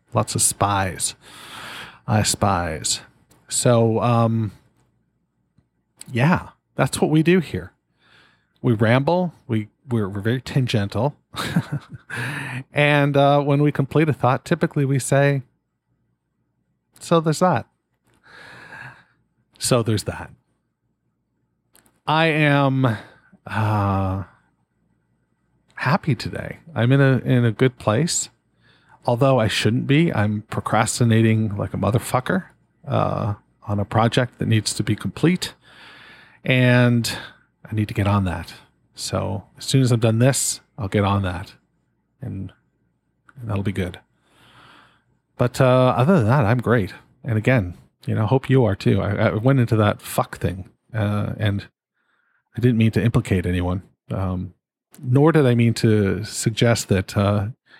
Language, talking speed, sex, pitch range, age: English, 135 wpm, male, 105-135 Hz, 40-59